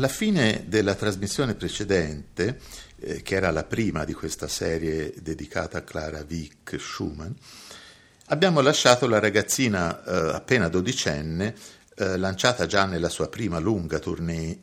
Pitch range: 80-105 Hz